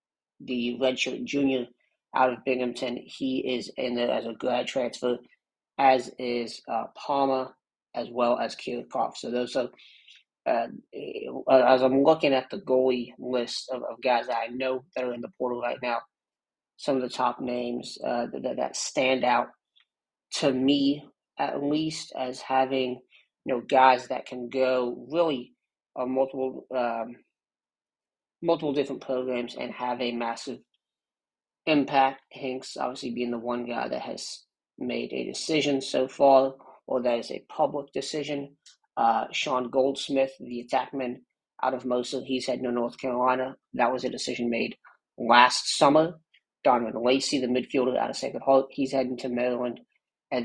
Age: 30-49